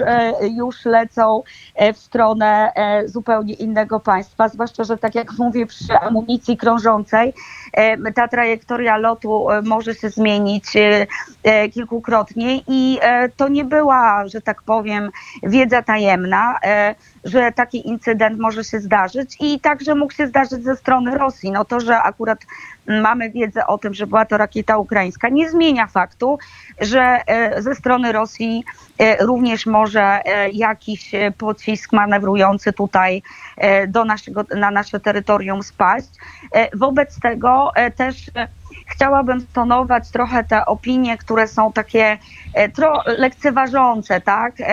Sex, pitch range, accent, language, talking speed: female, 205-240 Hz, native, Polish, 115 wpm